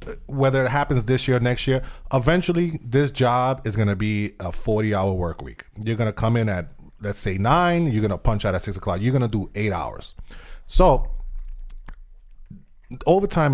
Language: English